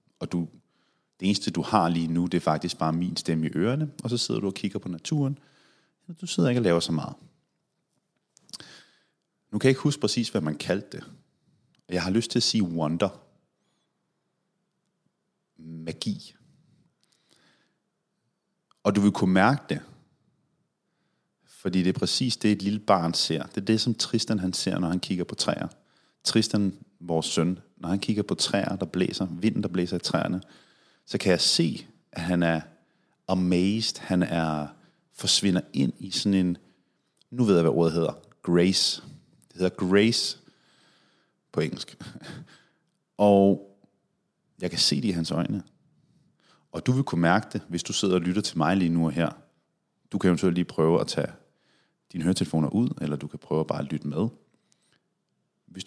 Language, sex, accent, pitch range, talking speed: Danish, male, native, 85-110 Hz, 175 wpm